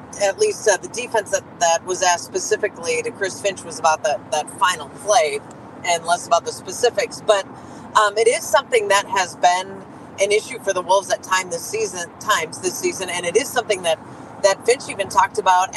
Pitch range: 185-280 Hz